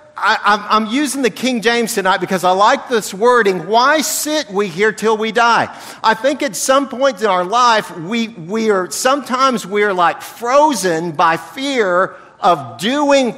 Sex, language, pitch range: male, English, 215-275 Hz